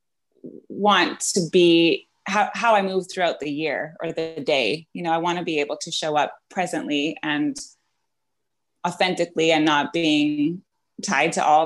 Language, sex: English, female